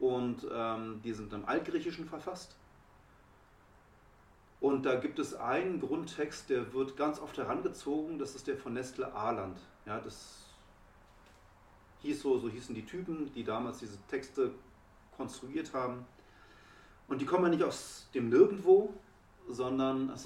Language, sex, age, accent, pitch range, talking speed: German, male, 40-59, German, 125-175 Hz, 140 wpm